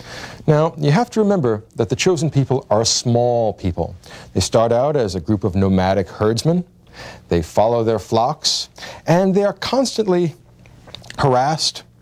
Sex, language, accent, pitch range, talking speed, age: male, English, American, 115-175 Hz, 150 wpm, 40-59